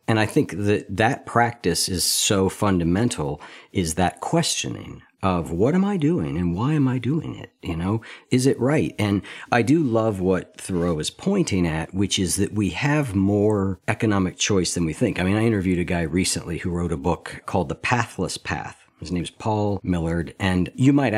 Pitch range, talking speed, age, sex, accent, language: 90-120 Hz, 200 wpm, 50-69, male, American, English